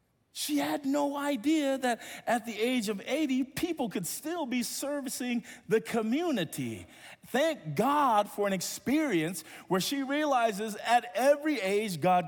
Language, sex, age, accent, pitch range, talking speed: English, male, 50-69, American, 140-210 Hz, 140 wpm